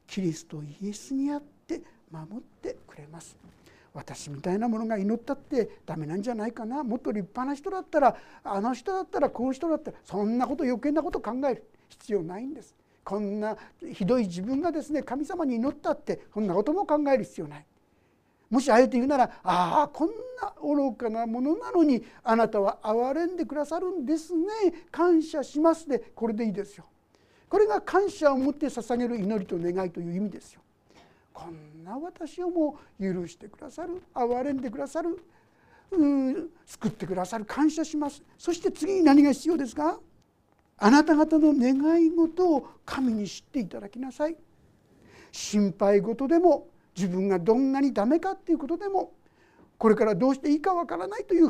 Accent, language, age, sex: native, Japanese, 60-79, male